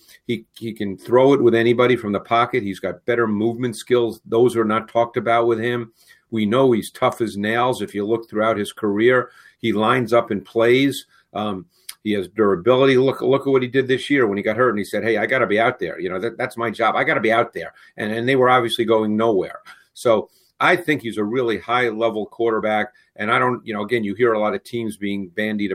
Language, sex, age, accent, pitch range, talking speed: English, male, 50-69, American, 105-125 Hz, 250 wpm